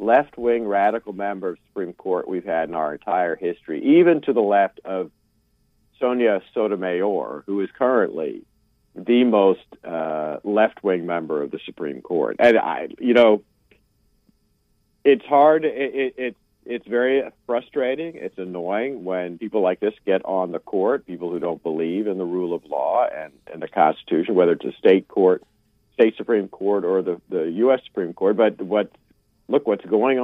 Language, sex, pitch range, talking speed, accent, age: English, male, 95-125 Hz, 170 wpm, American, 50-69